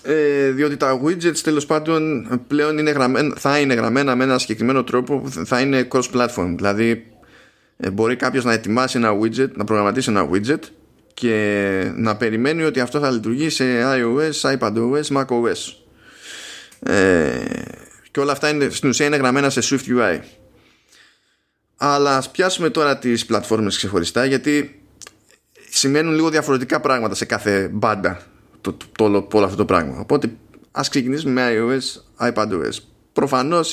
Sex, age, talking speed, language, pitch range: male, 20-39, 130 wpm, Greek, 110-140 Hz